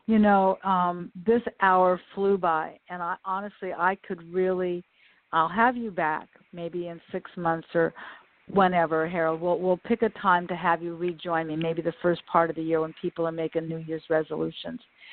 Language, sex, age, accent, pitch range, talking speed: English, female, 50-69, American, 170-210 Hz, 185 wpm